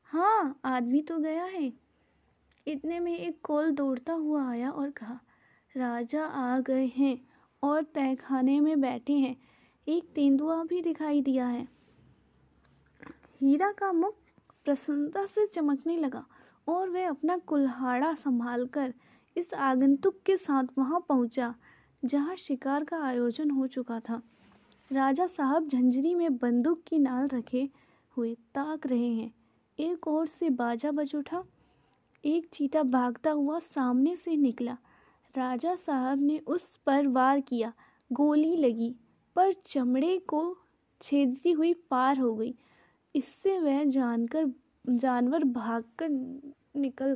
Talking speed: 130 wpm